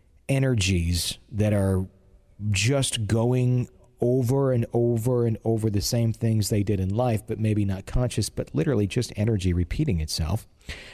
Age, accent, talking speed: 40-59, American, 150 wpm